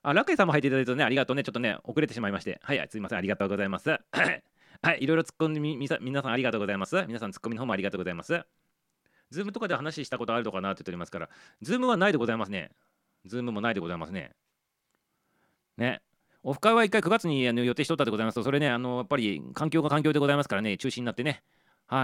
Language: Japanese